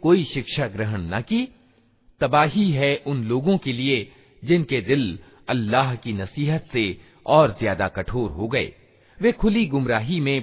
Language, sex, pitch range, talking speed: Hindi, male, 110-160 Hz, 150 wpm